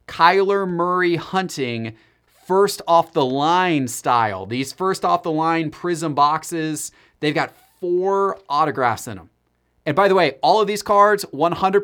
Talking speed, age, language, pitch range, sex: 150 wpm, 30-49, English, 130-175 Hz, male